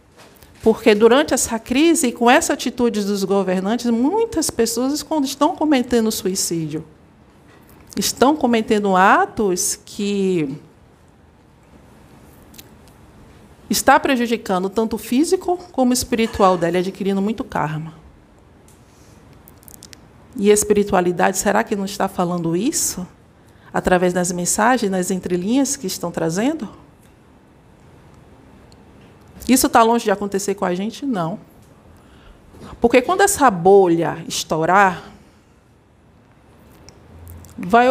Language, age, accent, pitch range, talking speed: Portuguese, 50-69, Brazilian, 180-245 Hz, 100 wpm